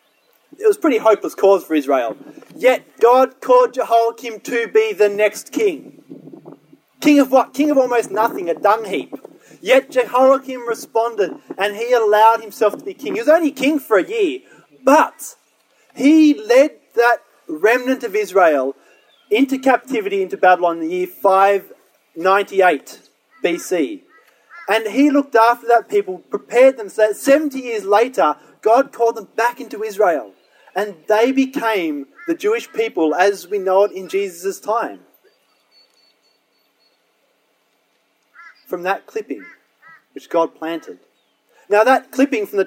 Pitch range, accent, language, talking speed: 210-300 Hz, Australian, English, 145 wpm